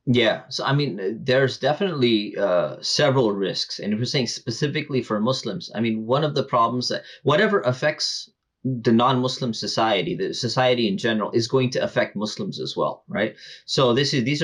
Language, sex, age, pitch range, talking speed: English, male, 20-39, 110-130 Hz, 185 wpm